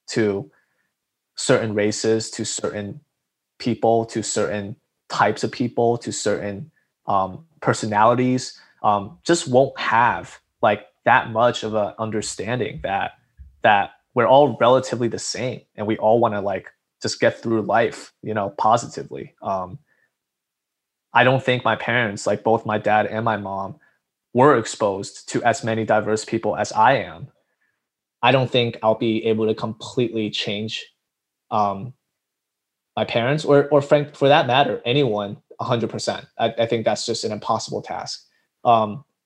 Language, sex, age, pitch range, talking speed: English, male, 20-39, 105-125 Hz, 150 wpm